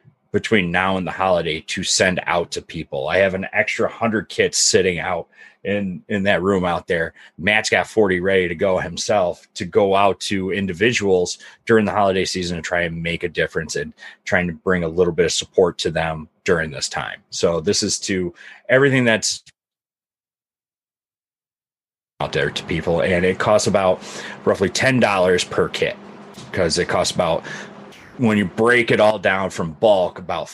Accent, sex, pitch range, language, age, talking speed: American, male, 90-105 Hz, English, 30-49, 180 wpm